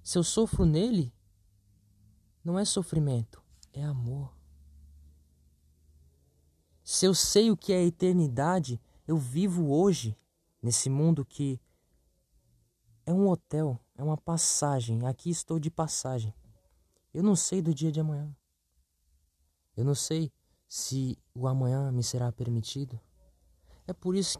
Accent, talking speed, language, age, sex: Brazilian, 130 wpm, Portuguese, 20-39, male